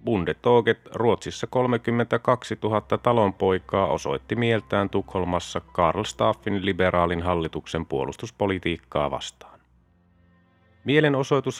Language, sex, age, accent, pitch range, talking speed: Finnish, male, 30-49, native, 90-115 Hz, 80 wpm